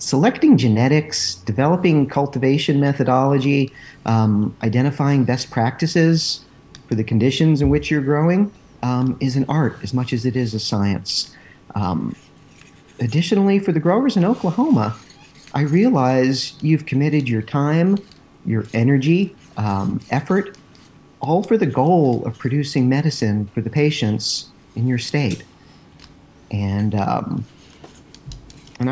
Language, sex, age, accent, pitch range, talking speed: English, male, 50-69, American, 115-155 Hz, 120 wpm